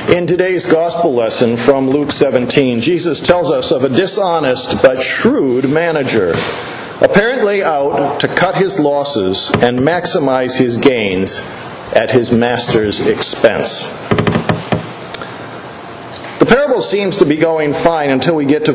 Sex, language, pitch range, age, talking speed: male, English, 125-160 Hz, 50-69, 130 wpm